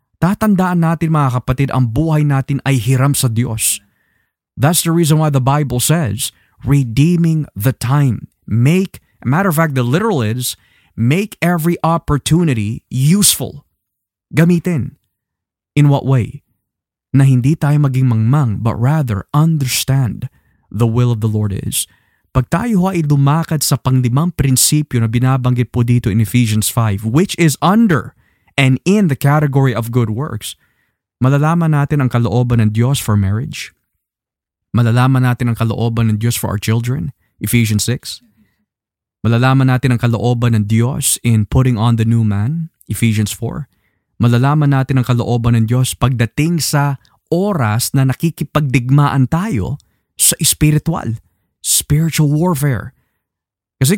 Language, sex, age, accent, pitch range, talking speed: Filipino, male, 20-39, native, 115-150 Hz, 140 wpm